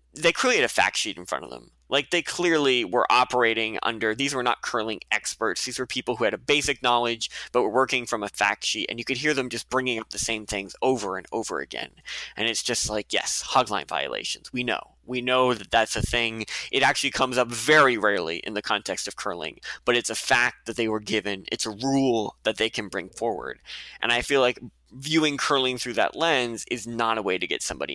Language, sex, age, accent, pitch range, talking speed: English, male, 20-39, American, 110-130 Hz, 240 wpm